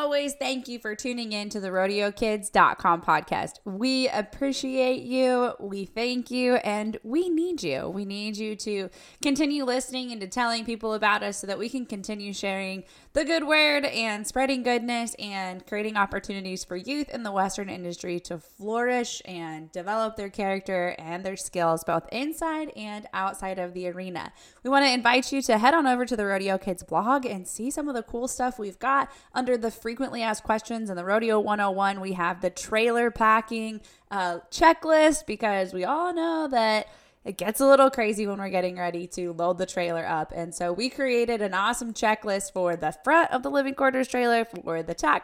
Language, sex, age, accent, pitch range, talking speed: English, female, 10-29, American, 190-255 Hz, 195 wpm